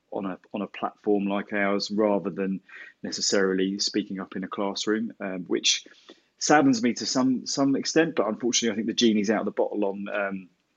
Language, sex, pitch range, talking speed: English, male, 95-110 Hz, 195 wpm